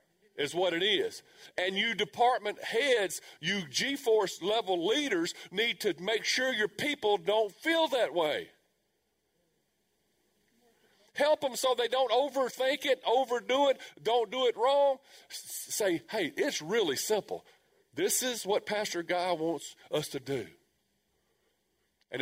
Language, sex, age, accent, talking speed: English, male, 50-69, American, 135 wpm